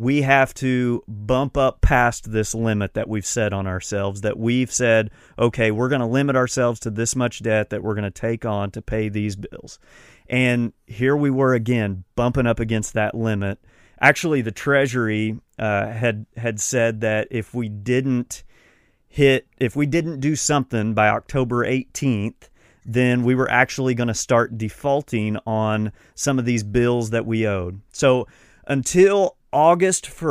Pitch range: 110-130 Hz